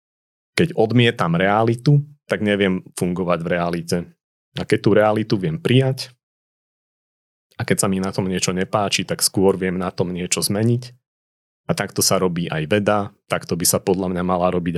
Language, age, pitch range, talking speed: Slovak, 30-49, 90-110 Hz, 170 wpm